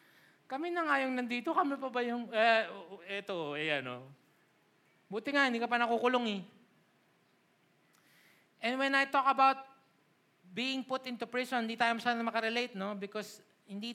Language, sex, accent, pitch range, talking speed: Filipino, male, native, 195-240 Hz, 75 wpm